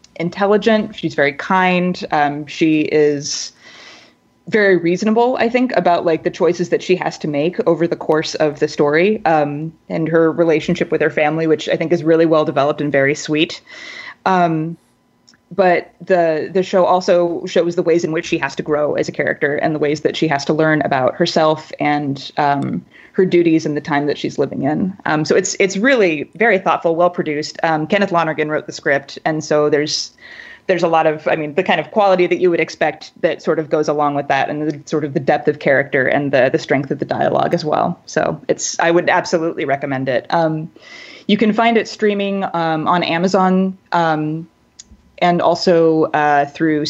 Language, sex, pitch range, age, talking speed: English, female, 150-180 Hz, 20-39, 200 wpm